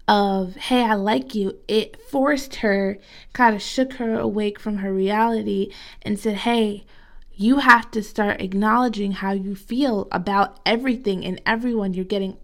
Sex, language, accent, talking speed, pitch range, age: female, English, American, 160 wpm, 190-220 Hz, 20-39